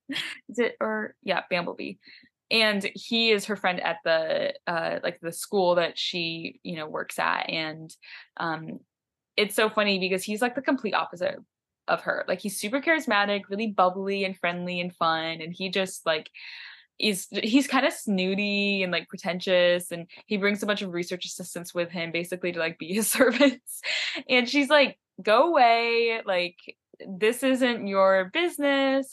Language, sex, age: English, female, 10-29